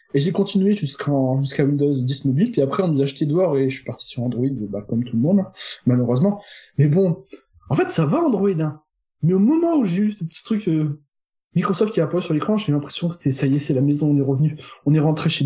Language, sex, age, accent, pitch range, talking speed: French, male, 20-39, French, 135-195 Hz, 265 wpm